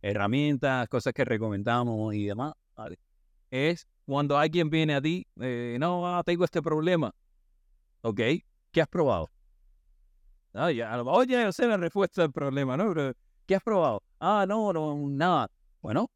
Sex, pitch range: male, 115-170 Hz